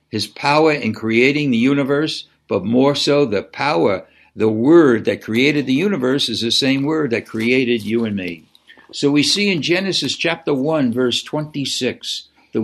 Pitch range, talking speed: 115-155 Hz, 170 wpm